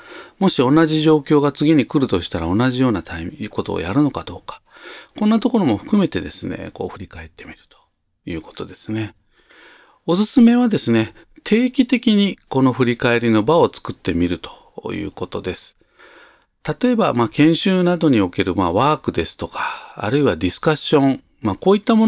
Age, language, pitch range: 40-59, Japanese, 105-165 Hz